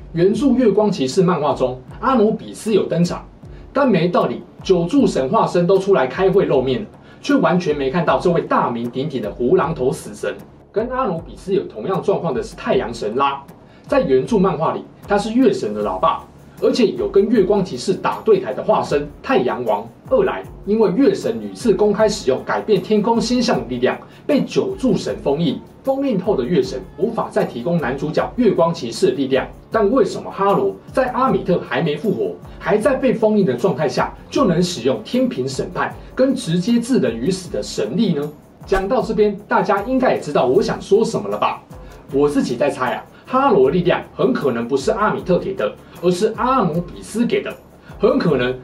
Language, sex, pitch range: Chinese, male, 160-220 Hz